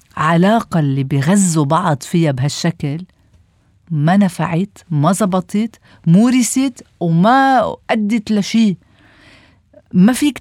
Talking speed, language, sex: 90 wpm, Arabic, female